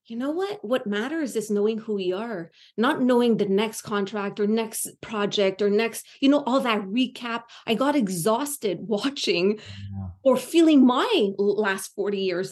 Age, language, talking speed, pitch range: 30-49, English, 170 wpm, 195-255 Hz